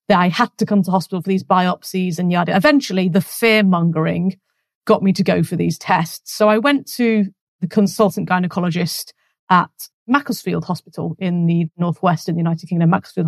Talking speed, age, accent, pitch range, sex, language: 180 wpm, 30-49, British, 185-225 Hz, female, English